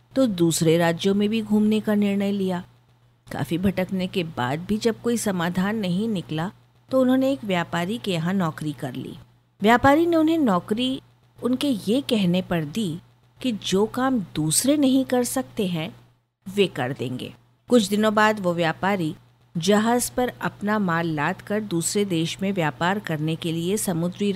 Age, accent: 50-69, native